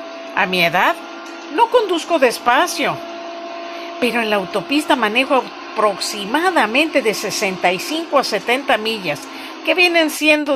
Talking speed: 115 wpm